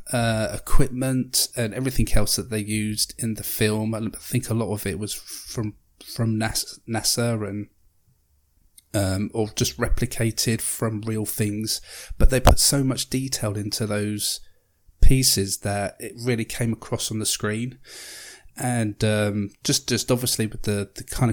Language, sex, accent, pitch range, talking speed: English, male, British, 105-120 Hz, 155 wpm